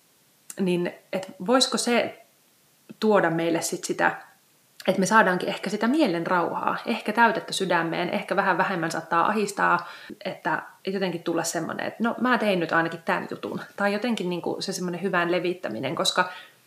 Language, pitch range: Finnish, 170-200 Hz